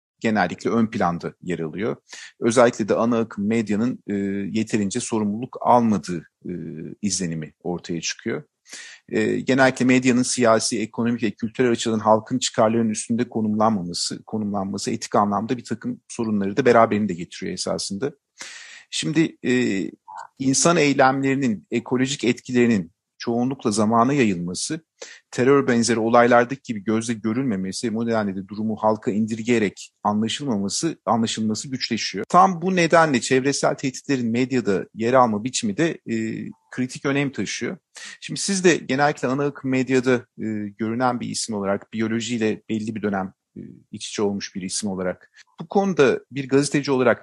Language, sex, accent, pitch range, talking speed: Turkish, male, native, 110-130 Hz, 135 wpm